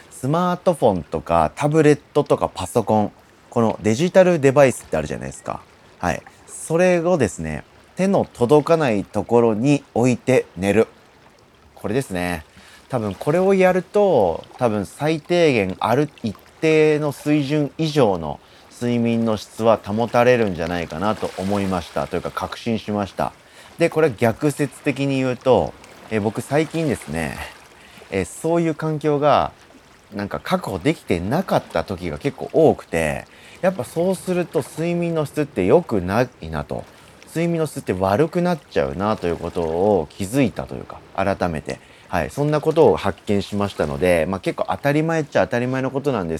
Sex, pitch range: male, 95-150 Hz